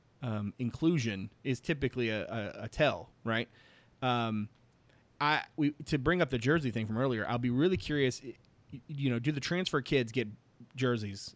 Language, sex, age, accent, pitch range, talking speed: English, male, 30-49, American, 115-145 Hz, 170 wpm